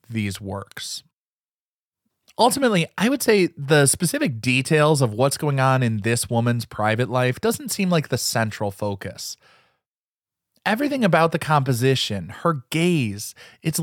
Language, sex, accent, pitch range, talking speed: English, male, American, 115-175 Hz, 135 wpm